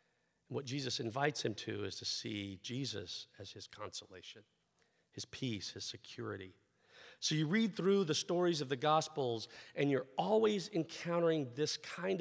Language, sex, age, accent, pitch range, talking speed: English, male, 50-69, American, 110-155 Hz, 150 wpm